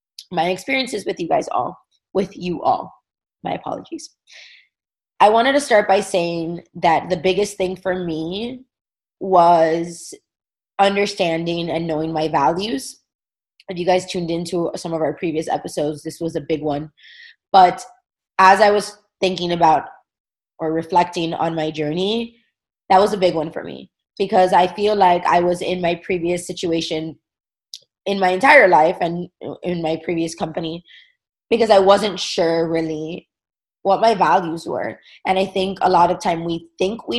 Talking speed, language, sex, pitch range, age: 160 wpm, English, female, 165-195 Hz, 20-39